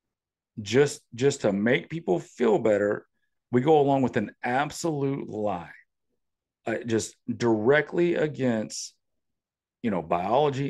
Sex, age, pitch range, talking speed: male, 50-69, 100-135 Hz, 120 wpm